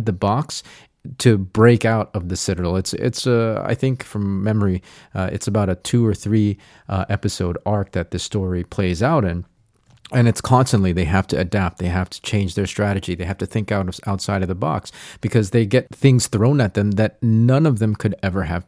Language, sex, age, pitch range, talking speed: English, male, 30-49, 95-120 Hz, 220 wpm